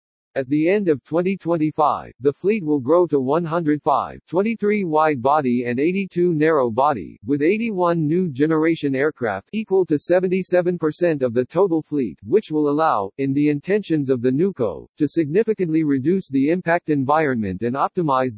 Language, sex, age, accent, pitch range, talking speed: English, male, 50-69, American, 130-175 Hz, 155 wpm